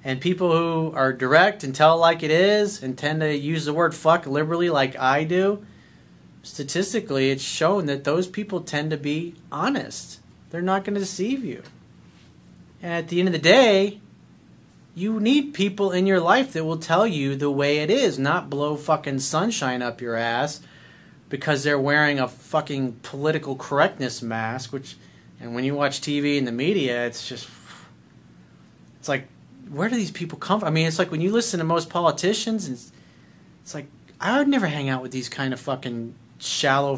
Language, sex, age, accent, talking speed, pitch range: English, male, 30-49, American, 195 wpm, 135-180 Hz